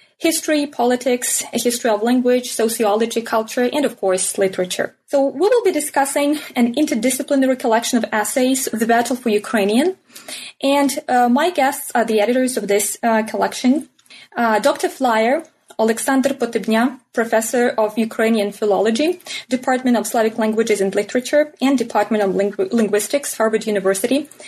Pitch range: 220-270 Hz